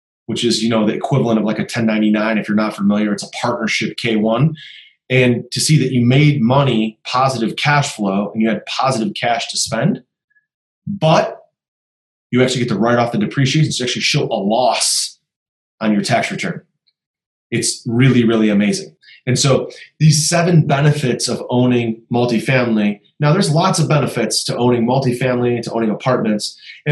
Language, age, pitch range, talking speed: English, 30-49, 120-145 Hz, 170 wpm